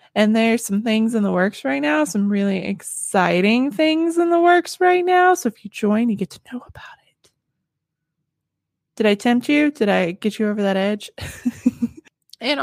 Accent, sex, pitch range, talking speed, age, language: American, female, 210-300 Hz, 190 wpm, 20-39, English